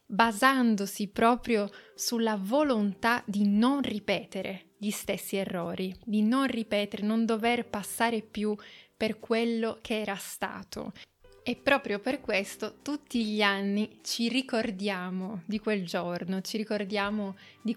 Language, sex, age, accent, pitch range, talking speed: Italian, female, 20-39, native, 205-230 Hz, 125 wpm